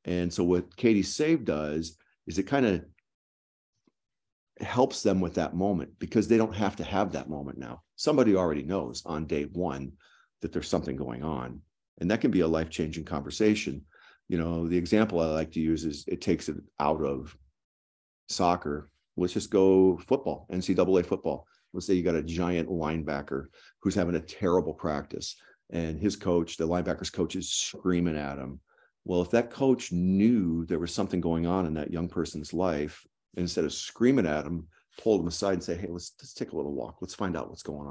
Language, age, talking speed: English, 40-59, 195 wpm